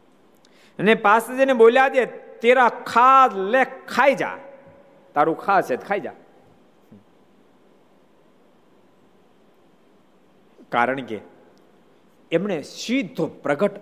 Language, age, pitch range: Gujarati, 50-69, 210-270 Hz